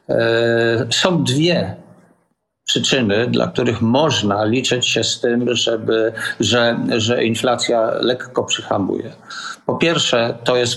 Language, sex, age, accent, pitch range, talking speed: Polish, male, 50-69, native, 115-135 Hz, 110 wpm